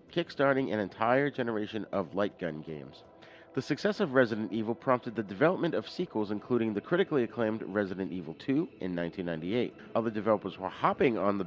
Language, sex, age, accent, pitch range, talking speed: English, male, 40-59, American, 100-125 Hz, 175 wpm